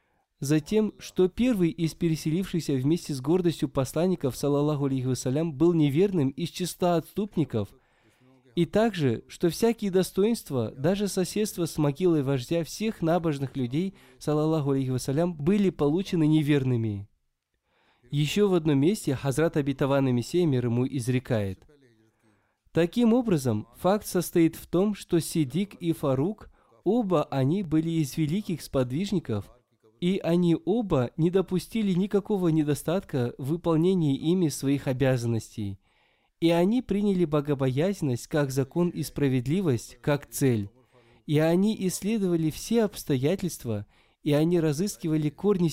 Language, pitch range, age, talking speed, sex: Russian, 135-175 Hz, 20-39, 115 wpm, male